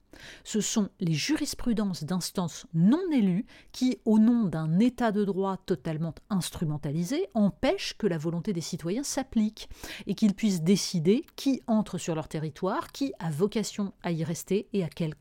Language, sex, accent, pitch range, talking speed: French, female, French, 165-225 Hz, 160 wpm